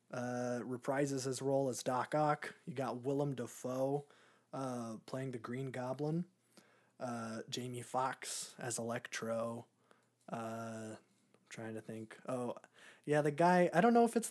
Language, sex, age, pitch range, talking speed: English, male, 20-39, 115-145 Hz, 145 wpm